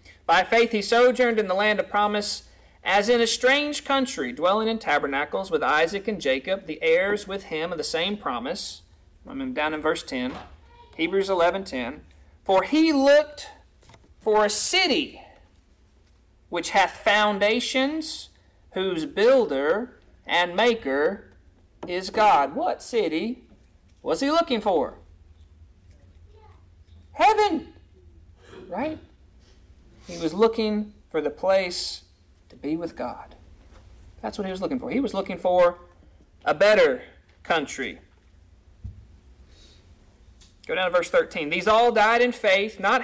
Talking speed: 130 wpm